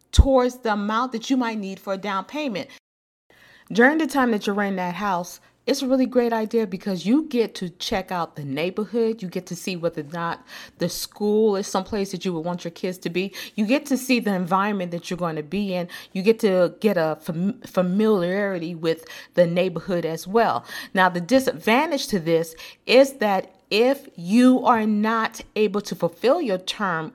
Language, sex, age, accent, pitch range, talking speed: English, female, 40-59, American, 180-240 Hz, 200 wpm